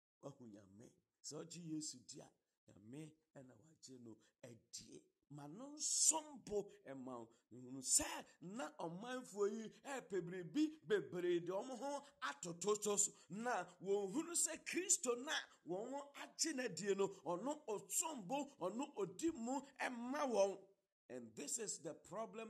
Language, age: English, 50-69